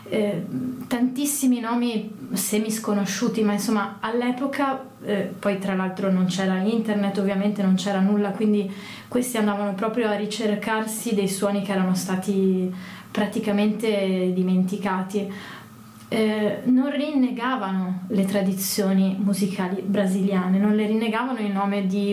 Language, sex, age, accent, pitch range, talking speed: Italian, female, 20-39, native, 195-225 Hz, 120 wpm